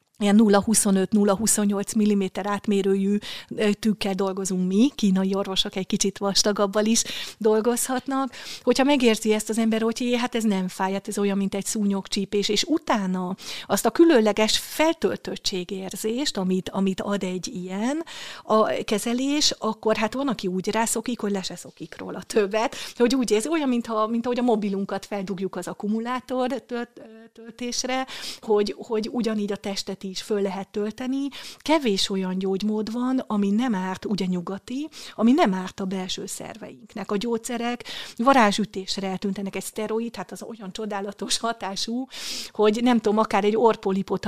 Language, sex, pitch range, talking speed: Hungarian, female, 195-230 Hz, 150 wpm